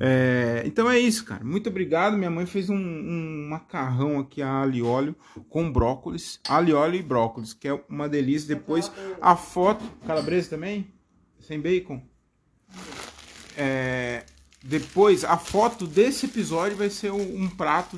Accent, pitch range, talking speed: Brazilian, 135-195 Hz, 145 wpm